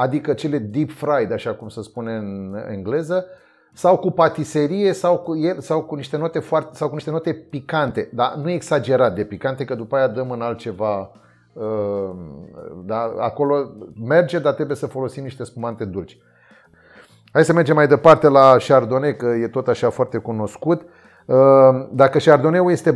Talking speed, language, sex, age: 160 wpm, Romanian, male, 30-49